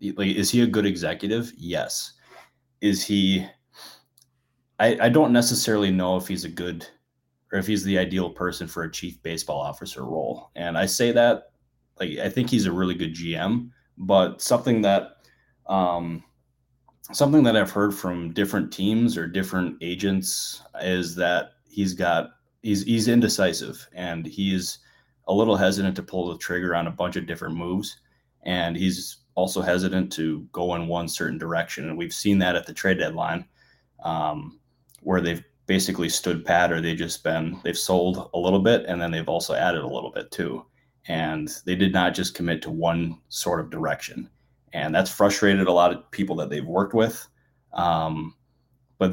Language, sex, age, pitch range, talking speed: English, male, 20-39, 85-105 Hz, 175 wpm